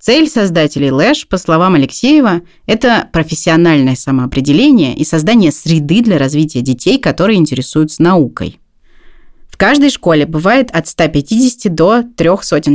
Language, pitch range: Russian, 150-200 Hz